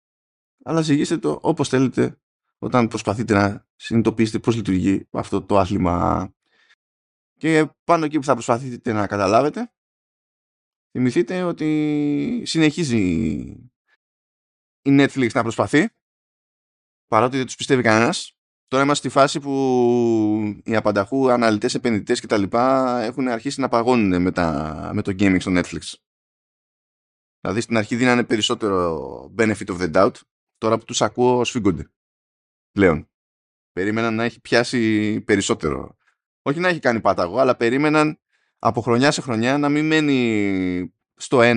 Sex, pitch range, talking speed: male, 100-135 Hz, 130 wpm